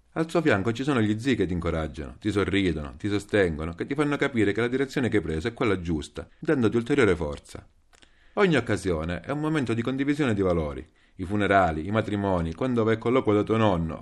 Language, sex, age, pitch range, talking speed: Italian, male, 40-59, 85-120 Hz, 210 wpm